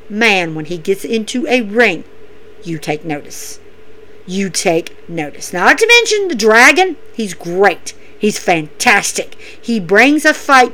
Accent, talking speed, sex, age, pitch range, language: American, 145 wpm, female, 50-69, 200-305 Hz, English